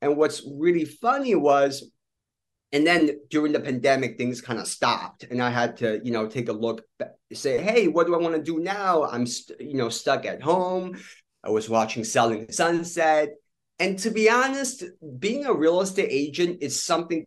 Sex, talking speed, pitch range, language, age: male, 190 wpm, 120-175 Hz, English, 30-49